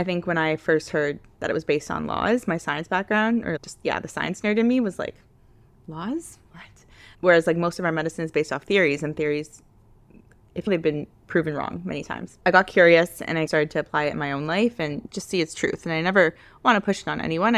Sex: female